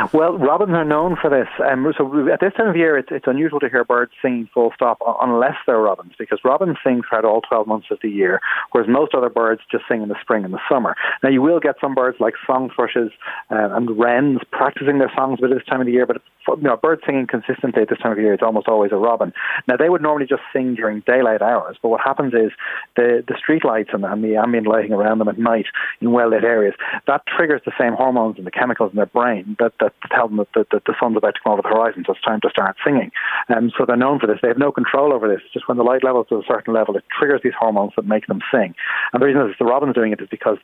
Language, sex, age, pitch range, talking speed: English, male, 30-49, 110-135 Hz, 280 wpm